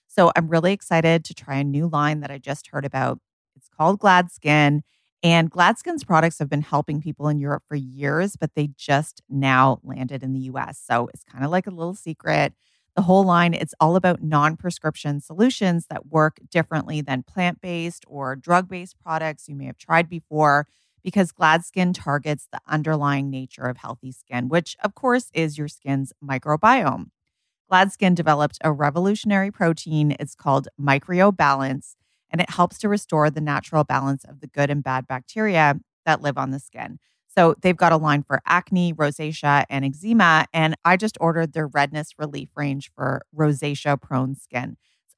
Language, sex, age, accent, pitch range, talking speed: English, female, 30-49, American, 140-175 Hz, 175 wpm